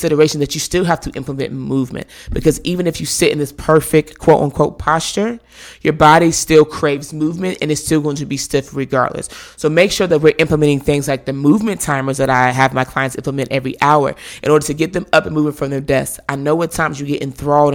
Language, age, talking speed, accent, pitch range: English, 20-39, 230 wpm, American, 135-160 Hz